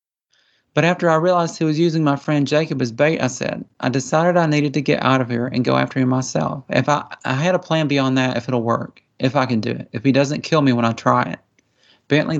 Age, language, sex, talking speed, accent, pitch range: 30-49, English, male, 260 wpm, American, 120-140 Hz